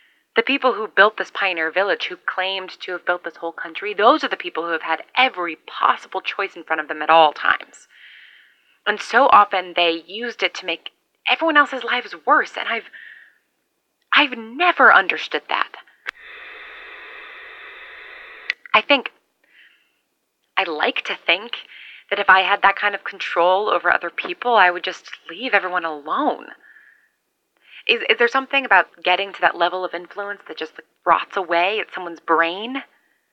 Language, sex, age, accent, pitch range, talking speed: English, female, 20-39, American, 165-215 Hz, 165 wpm